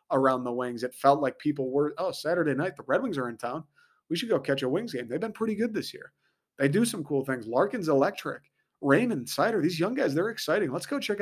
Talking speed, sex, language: 255 wpm, male, English